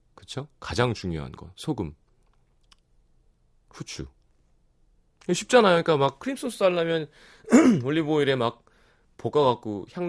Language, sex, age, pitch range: Korean, male, 30-49, 90-145 Hz